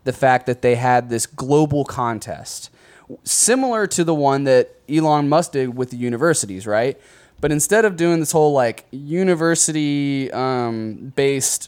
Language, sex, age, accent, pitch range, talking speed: English, male, 20-39, American, 120-150 Hz, 145 wpm